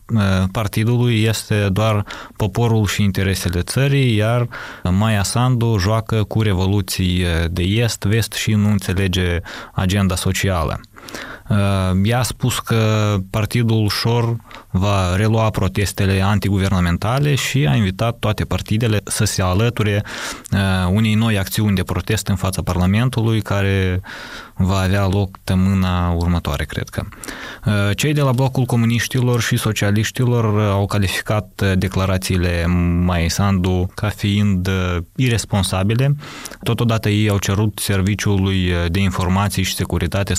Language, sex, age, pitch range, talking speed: Romanian, male, 20-39, 95-115 Hz, 115 wpm